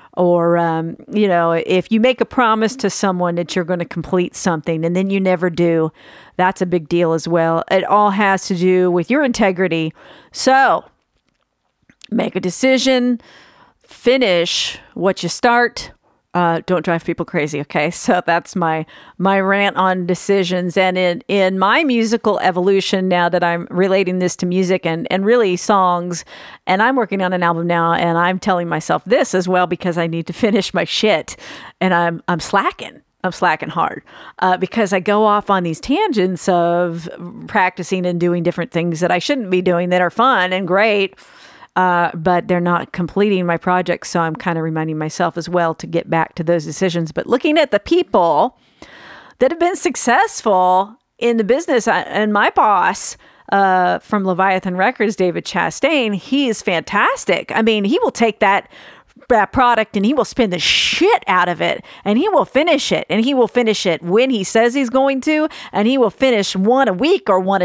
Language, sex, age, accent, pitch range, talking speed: English, female, 50-69, American, 175-225 Hz, 190 wpm